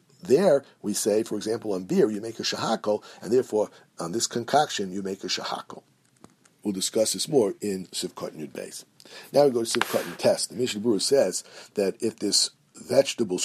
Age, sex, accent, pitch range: 50-69, male, American, 105-130 Hz